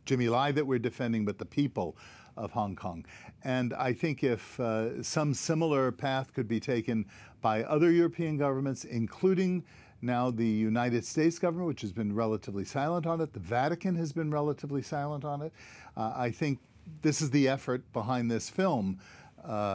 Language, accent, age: English, American, 50-69